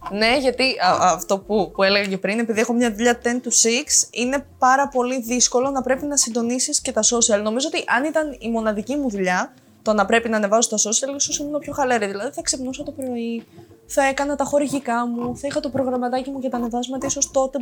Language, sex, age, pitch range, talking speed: Greek, female, 20-39, 210-275 Hz, 220 wpm